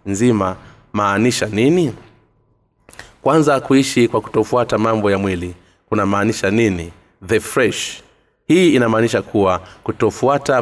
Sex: male